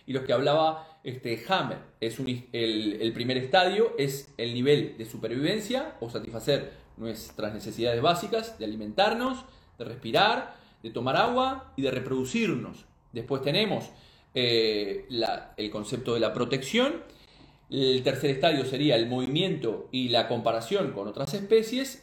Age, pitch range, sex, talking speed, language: 40-59, 130-195 Hz, male, 145 wpm, Spanish